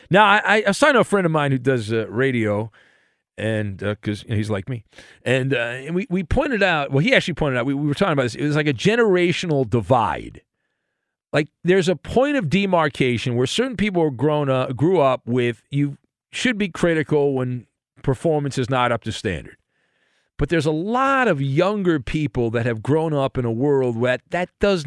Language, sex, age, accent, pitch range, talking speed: English, male, 40-59, American, 125-185 Hz, 210 wpm